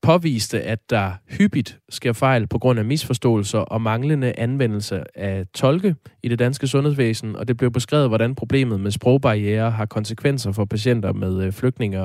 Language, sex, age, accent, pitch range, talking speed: Danish, male, 20-39, native, 105-130 Hz, 165 wpm